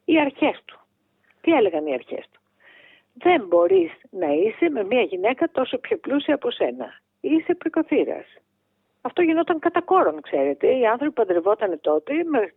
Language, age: Greek, 50-69